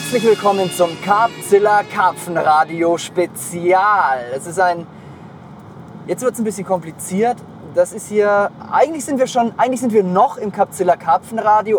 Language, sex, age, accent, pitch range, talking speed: German, male, 30-49, German, 170-210 Hz, 150 wpm